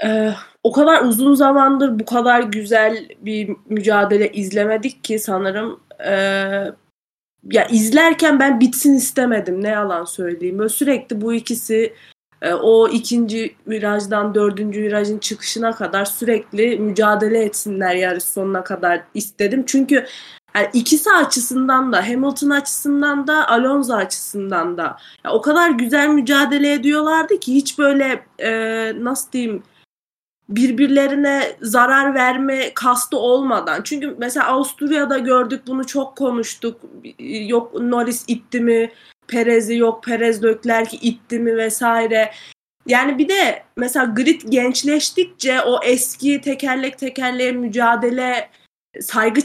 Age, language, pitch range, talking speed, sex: 30-49, Turkish, 215-270 Hz, 120 wpm, female